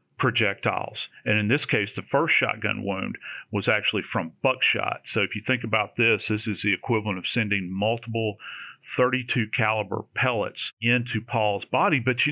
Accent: American